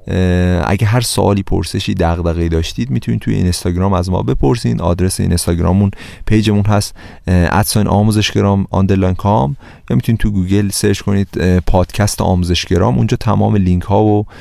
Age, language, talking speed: 30-49, Persian, 130 wpm